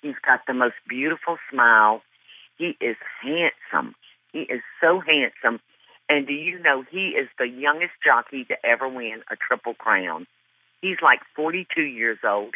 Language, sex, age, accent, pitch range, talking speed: English, female, 50-69, American, 115-145 Hz, 160 wpm